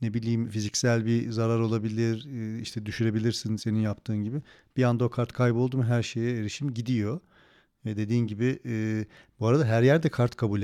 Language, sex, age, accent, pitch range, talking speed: Turkish, male, 40-59, native, 105-135 Hz, 170 wpm